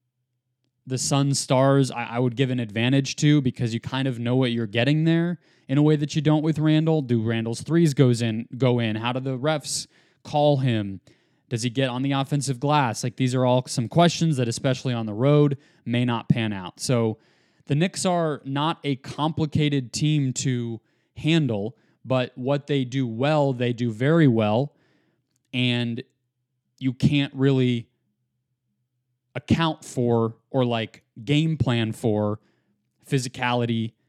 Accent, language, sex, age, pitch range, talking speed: American, English, male, 20-39, 120-150 Hz, 160 wpm